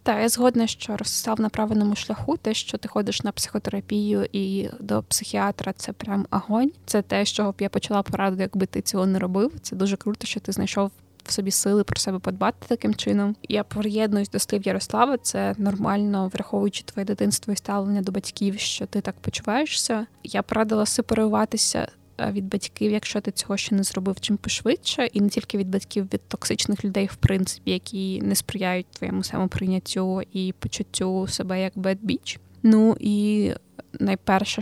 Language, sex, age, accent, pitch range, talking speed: Ukrainian, female, 20-39, native, 190-215 Hz, 175 wpm